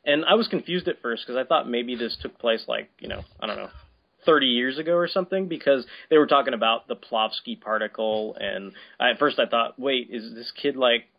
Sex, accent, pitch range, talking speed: male, American, 110-140 Hz, 225 wpm